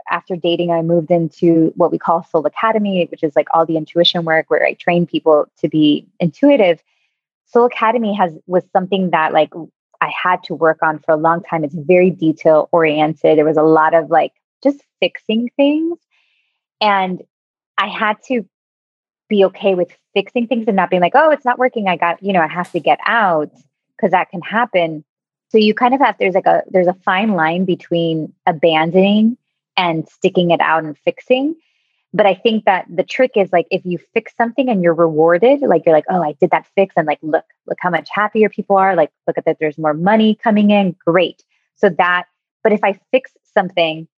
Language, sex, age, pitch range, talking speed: English, female, 20-39, 165-205 Hz, 205 wpm